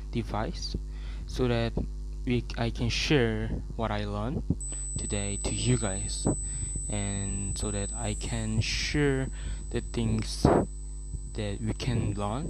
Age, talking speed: 20-39, 125 wpm